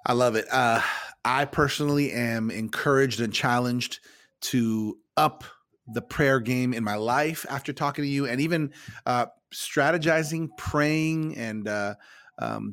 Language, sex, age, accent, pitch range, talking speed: English, male, 30-49, American, 115-130 Hz, 140 wpm